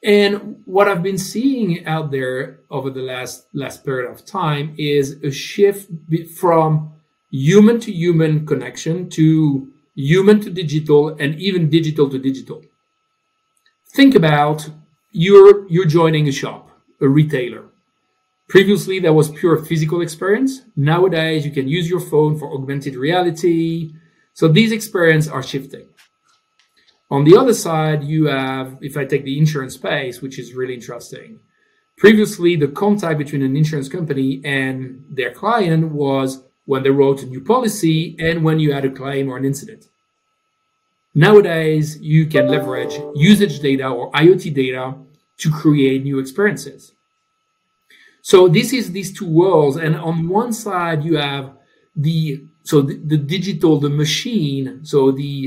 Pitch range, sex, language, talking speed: 140-195 Hz, male, English, 145 wpm